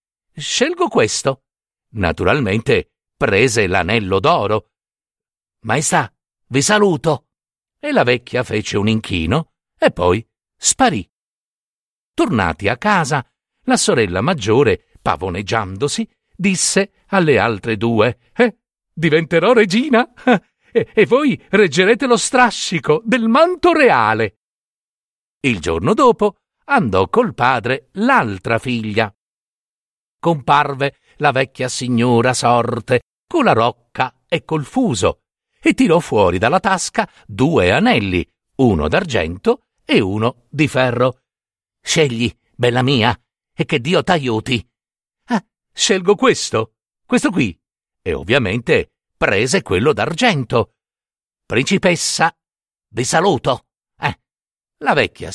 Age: 50-69